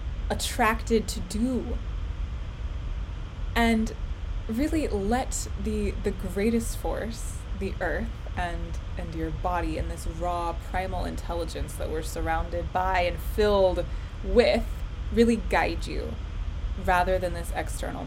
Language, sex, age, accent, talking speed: English, female, 20-39, American, 115 wpm